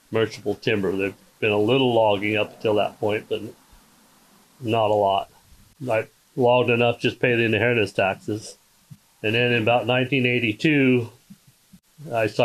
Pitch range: 105-125 Hz